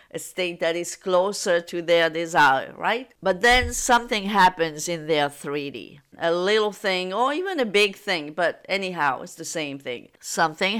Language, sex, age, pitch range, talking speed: English, female, 50-69, 165-215 Hz, 170 wpm